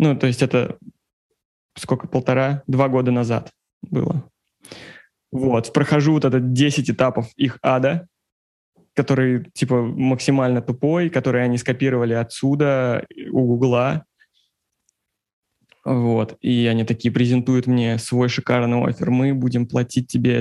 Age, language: 20-39, Russian